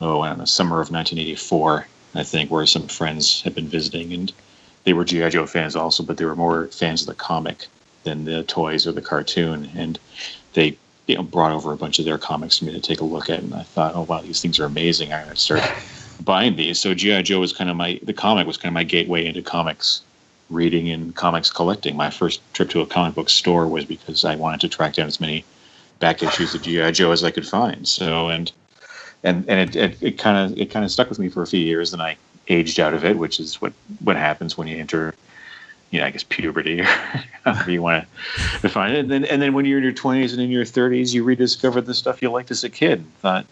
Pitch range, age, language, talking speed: 80-105 Hz, 30-49, English, 245 wpm